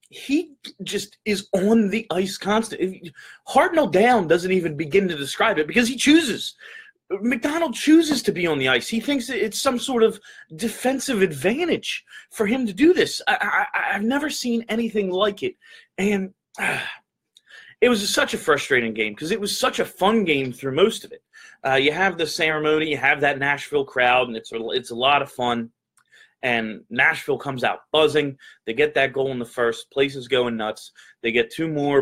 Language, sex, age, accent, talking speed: English, male, 30-49, American, 190 wpm